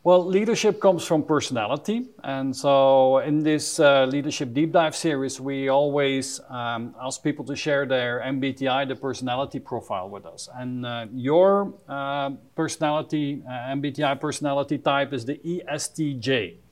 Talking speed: 145 wpm